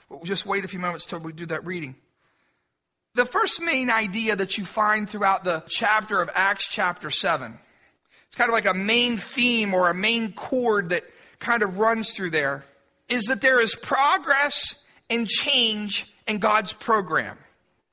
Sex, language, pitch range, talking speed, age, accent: male, English, 210-260 Hz, 175 wpm, 40-59, American